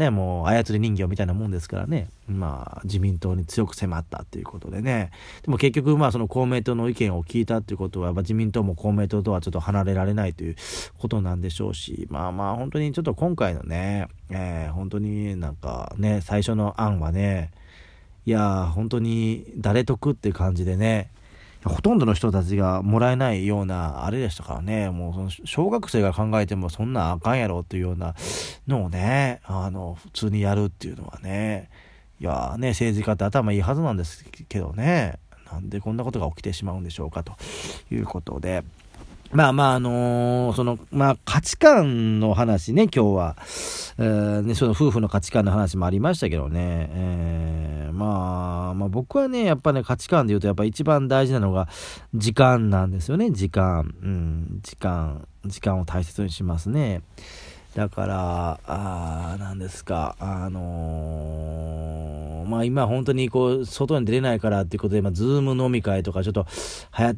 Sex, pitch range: male, 90-115 Hz